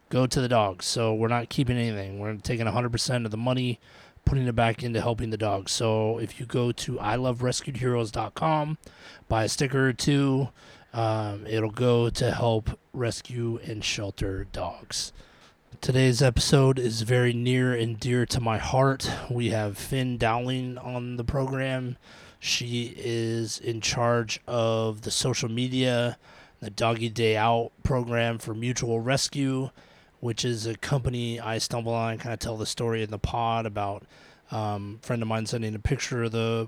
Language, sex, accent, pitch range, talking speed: English, male, American, 110-125 Hz, 165 wpm